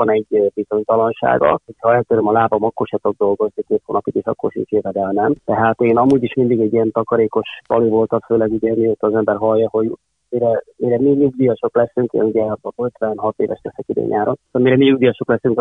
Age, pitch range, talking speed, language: 30-49, 115-135 Hz, 205 wpm, Hungarian